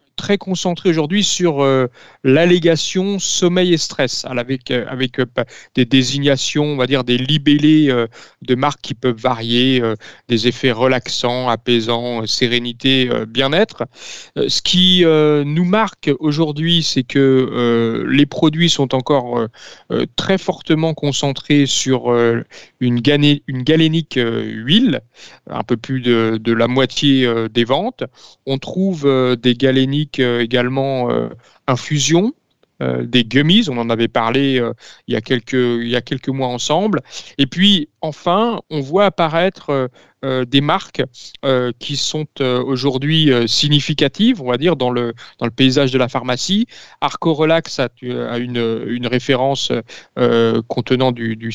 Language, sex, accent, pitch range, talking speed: French, male, French, 125-160 Hz, 140 wpm